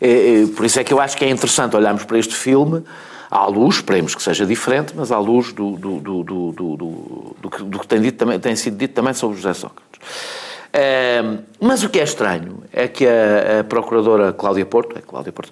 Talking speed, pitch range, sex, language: 180 wpm, 110-180 Hz, male, Portuguese